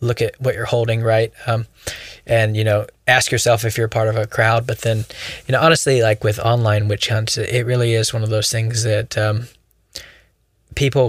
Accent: American